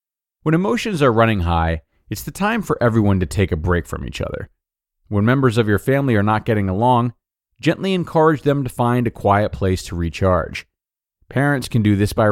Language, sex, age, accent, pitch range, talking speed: English, male, 30-49, American, 90-125 Hz, 200 wpm